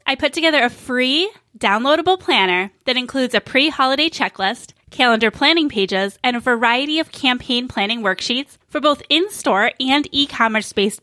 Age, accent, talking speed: 10-29, American, 145 wpm